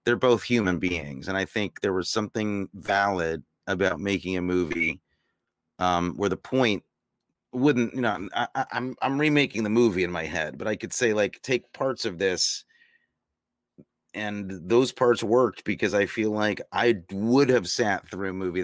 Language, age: English, 30-49